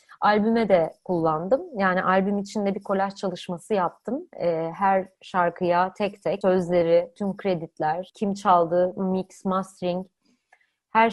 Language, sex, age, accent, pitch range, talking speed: Turkish, female, 30-49, native, 180-230 Hz, 120 wpm